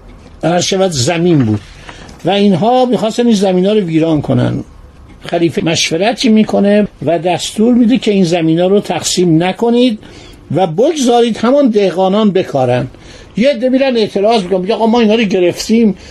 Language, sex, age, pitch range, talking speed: Persian, male, 60-79, 160-215 Hz, 140 wpm